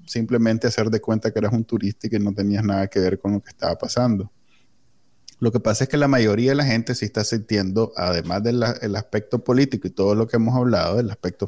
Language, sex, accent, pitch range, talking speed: Spanish, male, Venezuelan, 105-125 Hz, 240 wpm